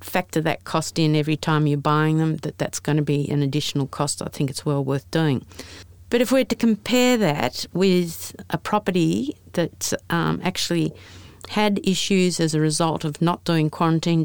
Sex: female